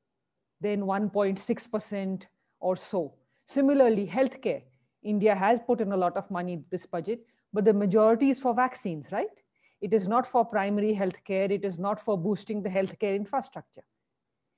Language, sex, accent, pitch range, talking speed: English, female, Indian, 190-230 Hz, 155 wpm